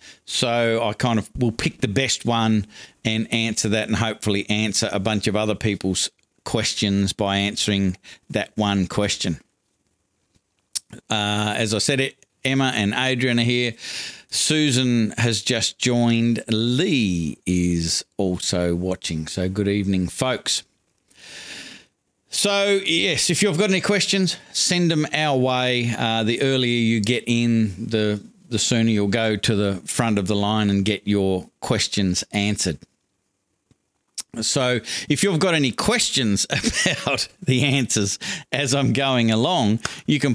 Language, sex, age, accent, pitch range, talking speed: English, male, 50-69, Australian, 105-125 Hz, 145 wpm